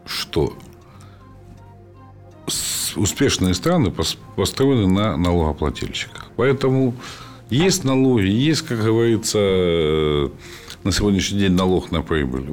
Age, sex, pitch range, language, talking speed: 50-69, male, 85-120 Hz, Ukrainian, 100 wpm